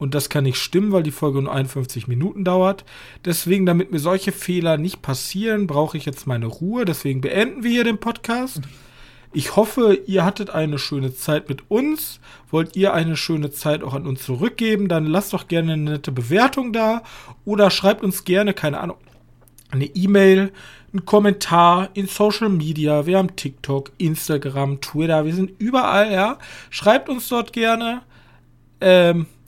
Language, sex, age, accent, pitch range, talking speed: German, male, 40-59, German, 145-195 Hz, 170 wpm